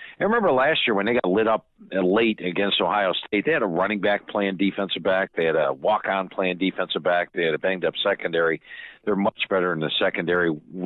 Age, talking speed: 50-69, 215 wpm